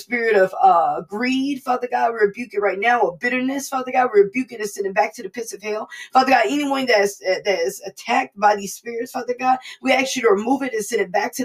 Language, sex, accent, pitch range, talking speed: English, female, American, 210-270 Hz, 260 wpm